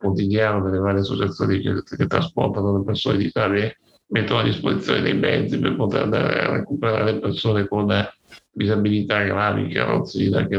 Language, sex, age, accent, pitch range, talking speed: Italian, male, 60-79, native, 100-110 Hz, 145 wpm